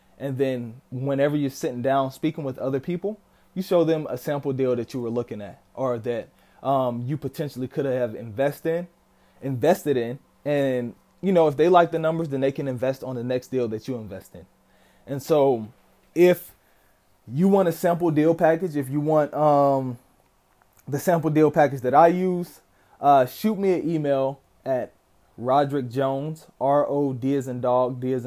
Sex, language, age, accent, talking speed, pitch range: male, English, 20-39, American, 180 wpm, 125-155 Hz